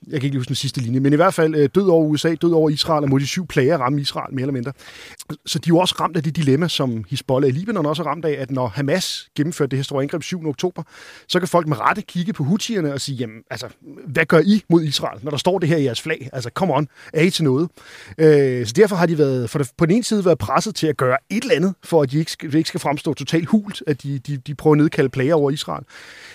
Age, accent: 30-49, native